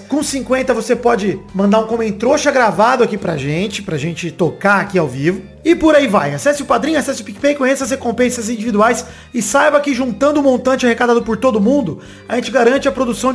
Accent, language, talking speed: Brazilian, Portuguese, 210 wpm